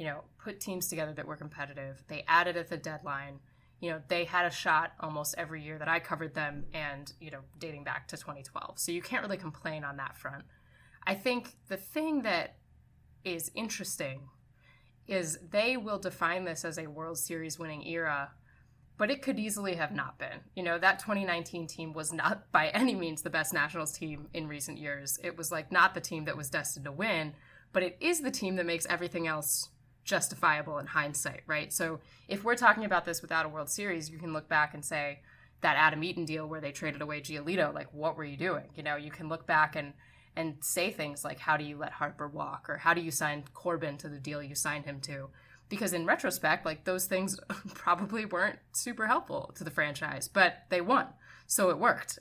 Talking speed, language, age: 215 wpm, English, 20-39